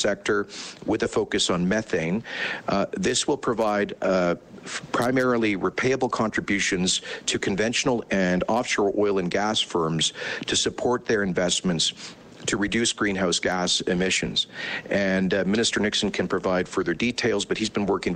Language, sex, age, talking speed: English, male, 50-69, 140 wpm